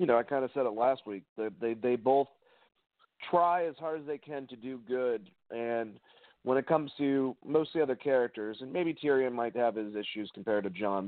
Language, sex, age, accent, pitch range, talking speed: English, male, 40-59, American, 120-150 Hz, 225 wpm